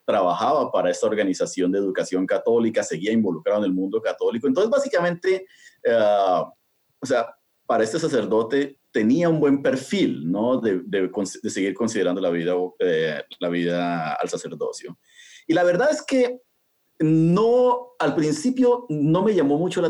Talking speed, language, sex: 155 wpm, Spanish, male